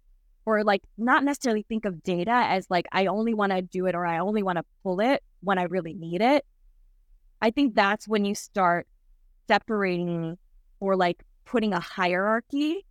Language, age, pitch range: English, 20-39, 180-235 Hz